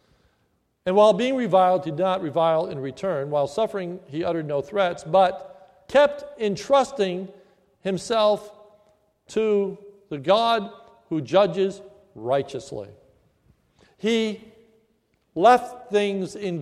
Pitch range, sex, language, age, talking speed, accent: 175-225 Hz, male, English, 50-69, 110 wpm, American